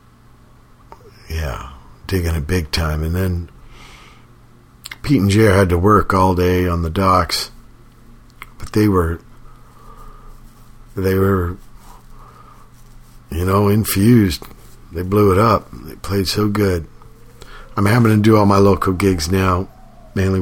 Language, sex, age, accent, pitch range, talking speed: English, male, 50-69, American, 85-100 Hz, 130 wpm